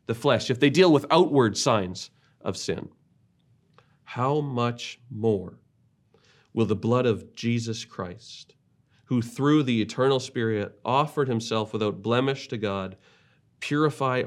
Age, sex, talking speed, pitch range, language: 40-59, male, 130 wpm, 100-125 Hz, English